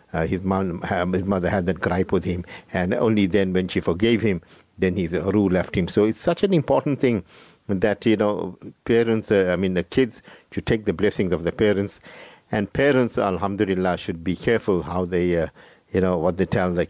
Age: 50-69